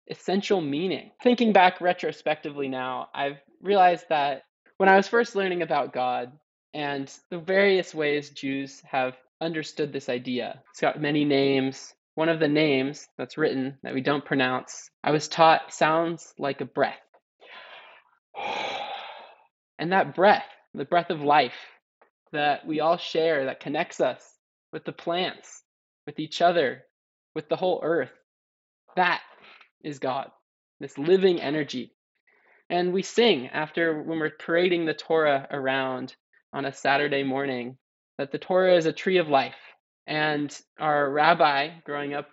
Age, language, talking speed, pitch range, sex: 20-39, English, 145 wpm, 140-175 Hz, male